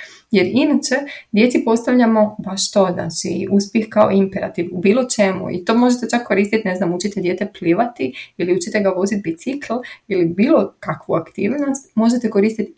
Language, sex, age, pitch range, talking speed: Croatian, female, 20-39, 170-215 Hz, 160 wpm